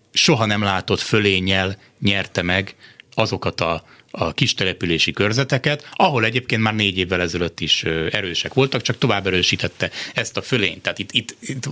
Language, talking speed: Hungarian, 155 wpm